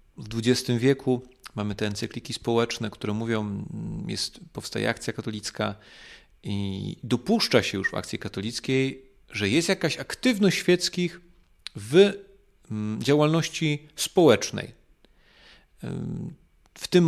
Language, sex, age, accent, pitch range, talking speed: Polish, male, 40-59, native, 105-140 Hz, 100 wpm